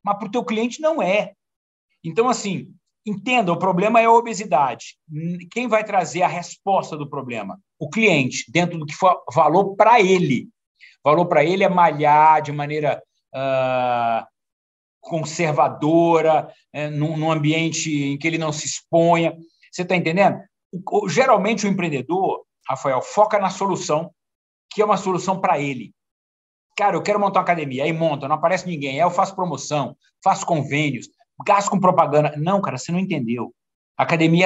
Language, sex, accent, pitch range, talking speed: Portuguese, male, Brazilian, 150-200 Hz, 155 wpm